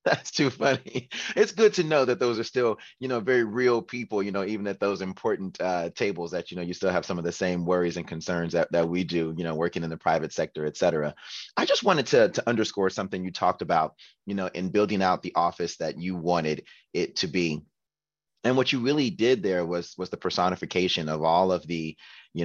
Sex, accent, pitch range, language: male, American, 80-100 Hz, English